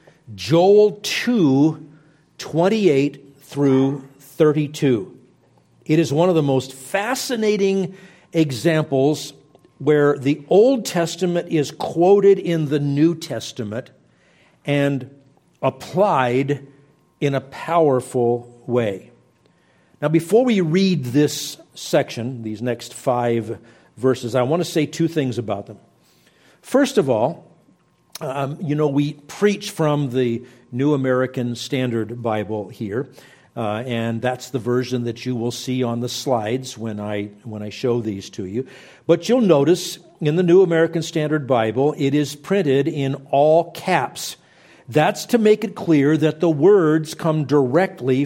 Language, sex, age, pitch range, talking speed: English, male, 50-69, 125-165 Hz, 130 wpm